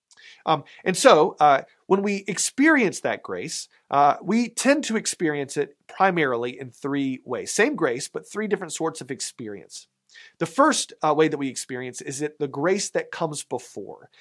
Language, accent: English, American